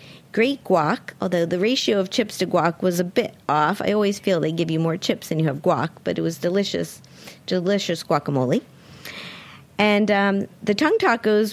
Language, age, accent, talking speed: English, 50-69, American, 185 wpm